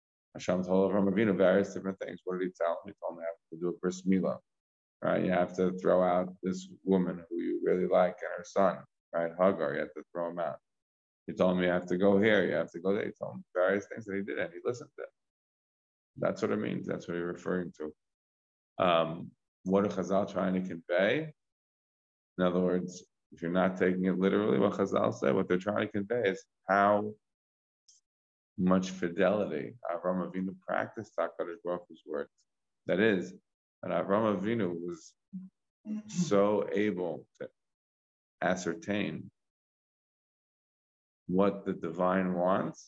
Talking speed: 180 wpm